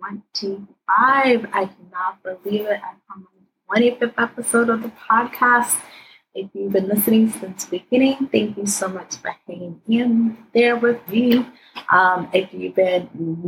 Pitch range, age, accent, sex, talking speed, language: 185-235 Hz, 20-39, American, female, 155 wpm, English